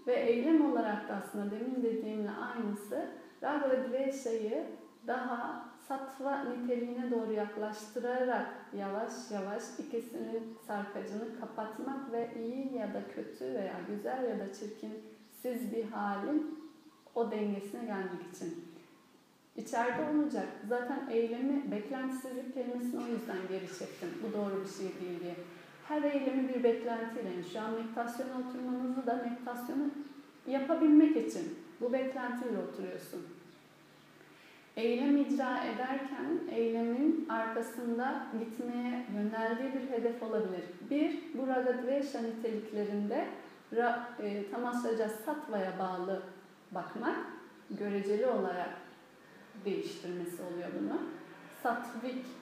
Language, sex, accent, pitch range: Turkish, female, native, 210-265 Hz